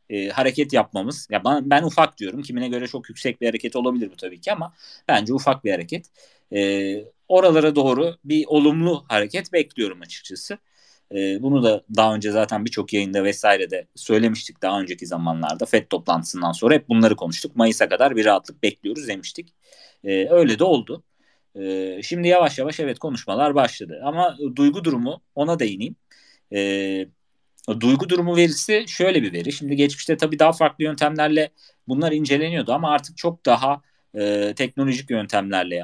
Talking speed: 155 wpm